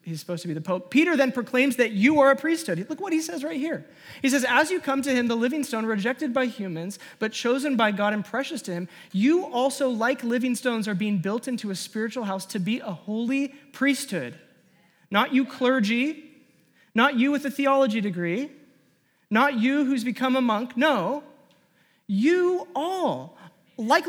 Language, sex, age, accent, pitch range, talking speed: English, male, 30-49, American, 180-260 Hz, 190 wpm